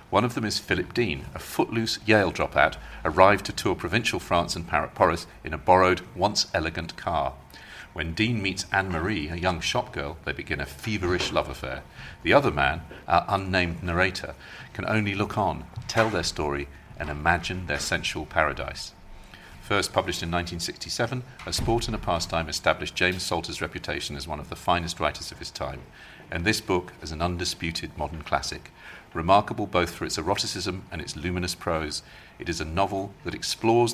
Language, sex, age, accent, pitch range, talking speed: English, male, 50-69, British, 80-95 Hz, 175 wpm